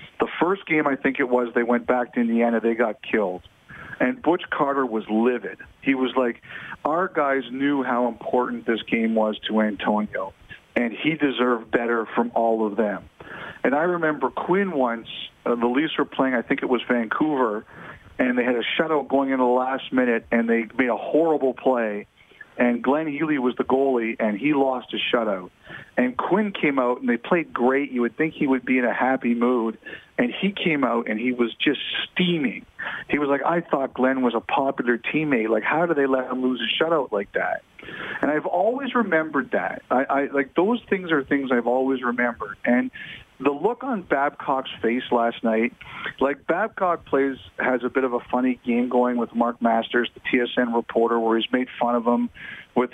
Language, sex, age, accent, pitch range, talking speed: English, male, 50-69, American, 120-145 Hz, 200 wpm